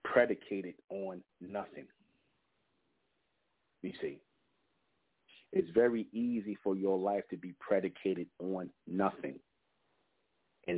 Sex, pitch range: male, 95-110 Hz